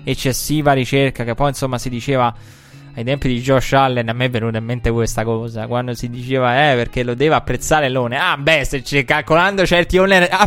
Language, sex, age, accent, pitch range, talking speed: Italian, male, 20-39, native, 130-170 Hz, 205 wpm